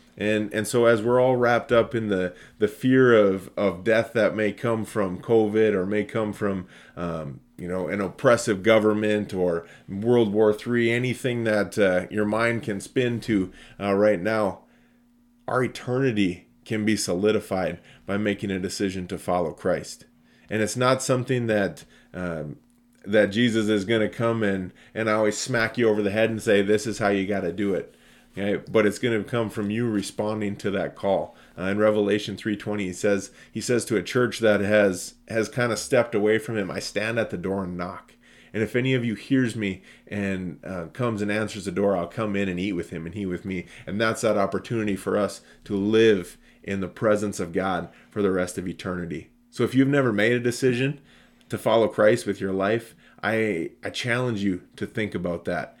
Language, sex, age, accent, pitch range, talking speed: English, male, 30-49, American, 95-115 Hz, 205 wpm